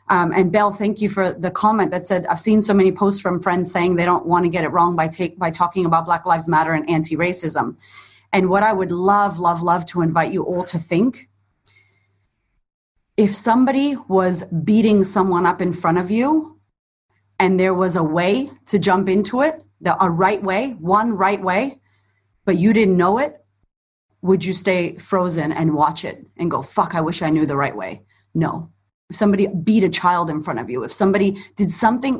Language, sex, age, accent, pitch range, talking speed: English, female, 30-49, American, 170-205 Hz, 205 wpm